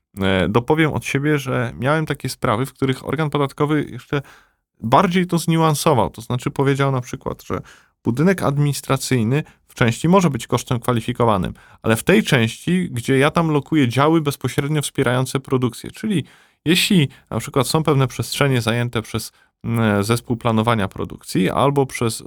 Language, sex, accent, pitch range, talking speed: Polish, male, native, 115-145 Hz, 150 wpm